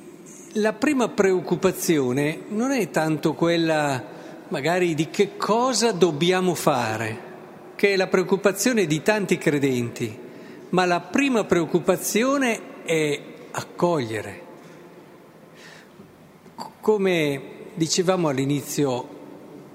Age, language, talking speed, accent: 50-69, Italian, 90 wpm, native